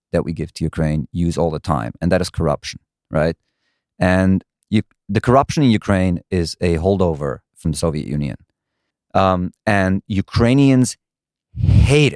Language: English